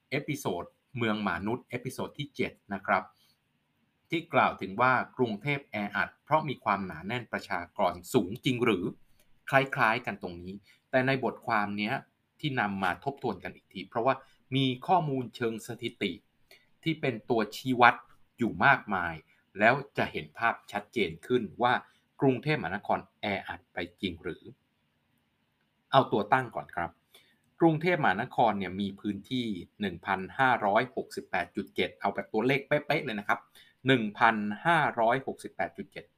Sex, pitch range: male, 100-130 Hz